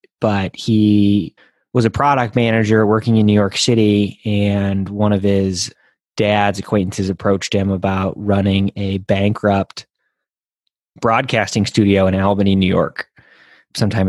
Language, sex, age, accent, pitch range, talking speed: English, male, 20-39, American, 95-110 Hz, 130 wpm